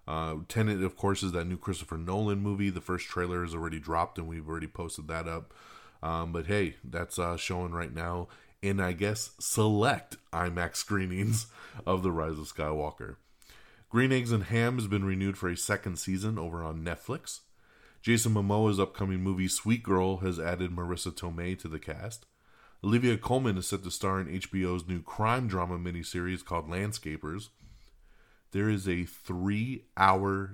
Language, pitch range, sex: English, 85-100 Hz, male